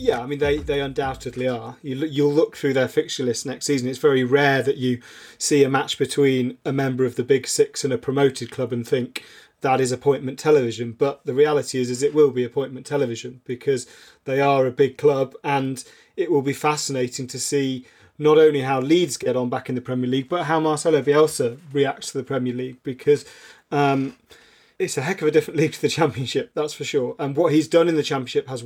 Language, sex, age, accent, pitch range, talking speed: English, male, 30-49, British, 130-150 Hz, 220 wpm